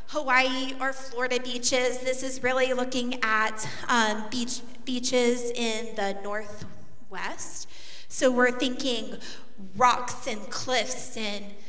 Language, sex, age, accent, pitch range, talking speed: English, female, 30-49, American, 220-265 Hz, 115 wpm